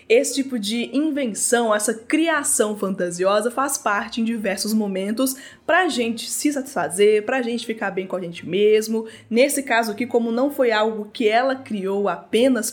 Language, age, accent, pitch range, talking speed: Portuguese, 20-39, Brazilian, 200-265 Hz, 165 wpm